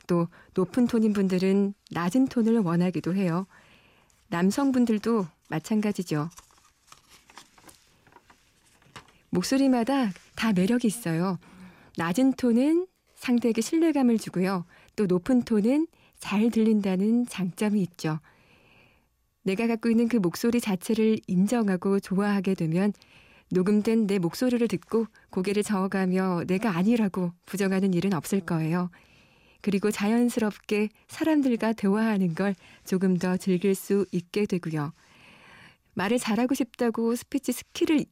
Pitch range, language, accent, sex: 185-235 Hz, Korean, native, female